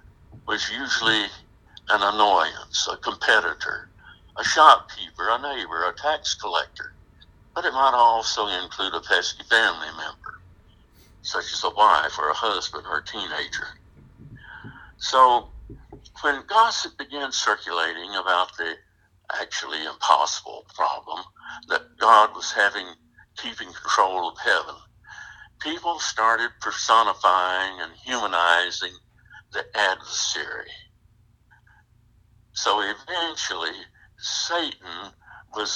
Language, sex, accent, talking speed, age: English, male, American, 100 wpm, 60-79